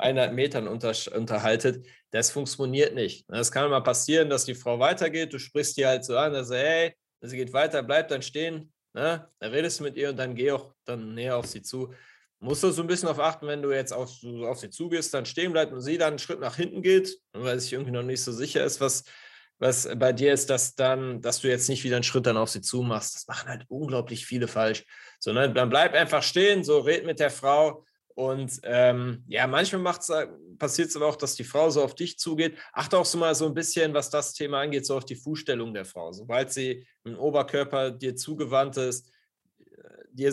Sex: male